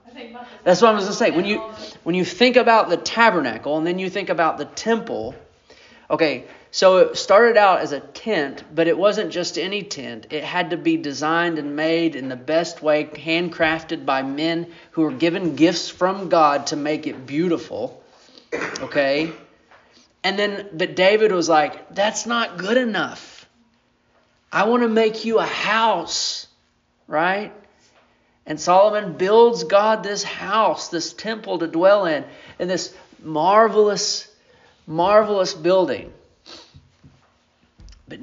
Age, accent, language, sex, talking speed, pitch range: 30-49, American, English, male, 150 wpm, 155-220 Hz